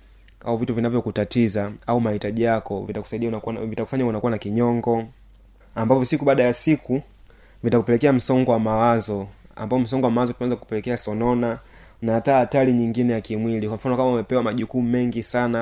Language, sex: Swahili, male